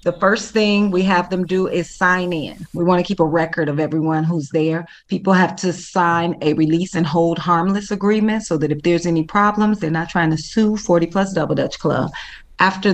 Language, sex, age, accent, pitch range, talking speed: English, female, 30-49, American, 170-195 Hz, 220 wpm